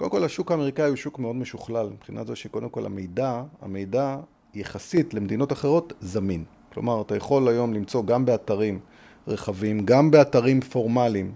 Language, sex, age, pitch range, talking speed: Hebrew, male, 30-49, 115-150 Hz, 155 wpm